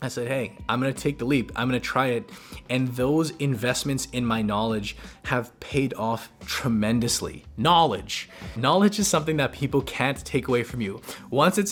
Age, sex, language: 20-39, male, English